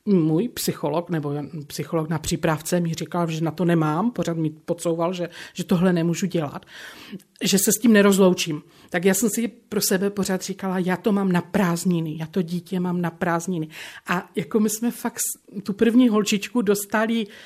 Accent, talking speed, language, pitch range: native, 180 wpm, Czech, 185-240 Hz